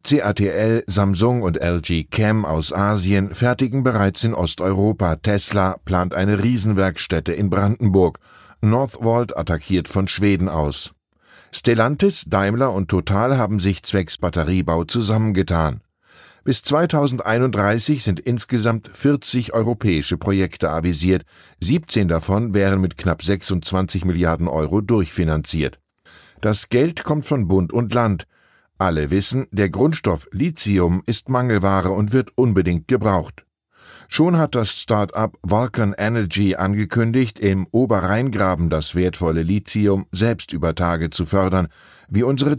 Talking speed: 120 wpm